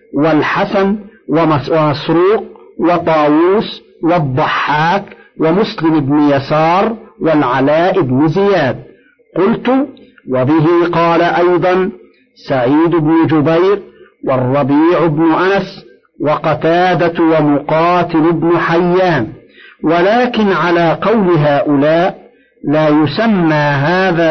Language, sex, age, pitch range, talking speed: Arabic, male, 50-69, 155-195 Hz, 75 wpm